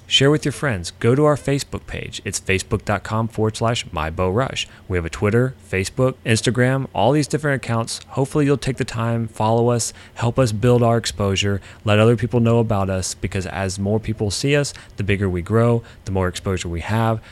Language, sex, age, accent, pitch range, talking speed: English, male, 30-49, American, 95-120 Hz, 200 wpm